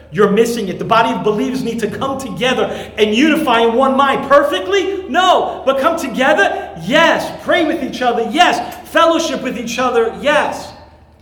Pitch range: 185-260 Hz